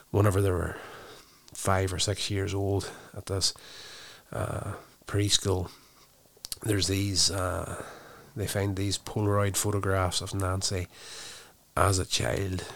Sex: male